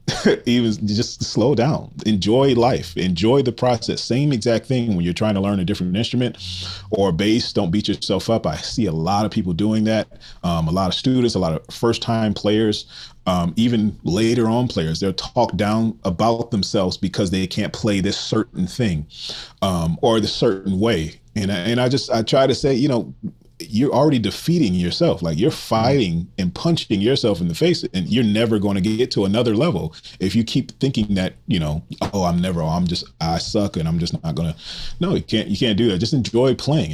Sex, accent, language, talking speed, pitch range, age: male, American, English, 210 wpm, 85-115 Hz, 30-49